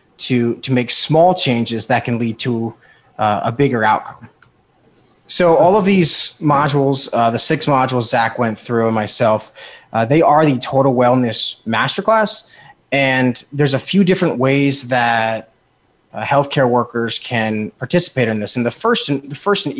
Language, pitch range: English, 120-140 Hz